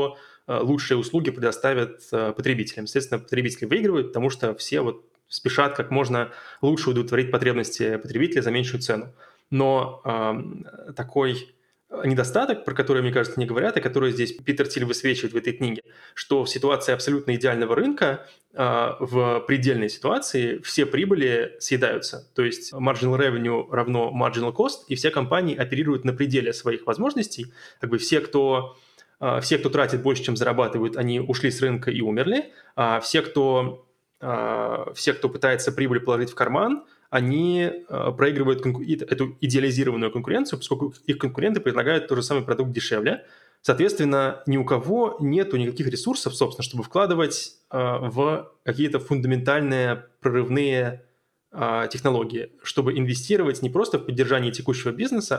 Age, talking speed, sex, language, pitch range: 20-39, 140 wpm, male, English, 125-145 Hz